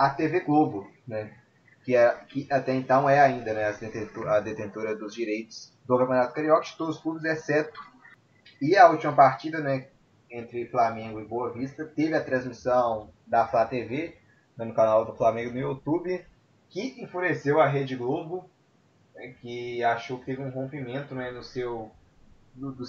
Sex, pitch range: male, 115-140 Hz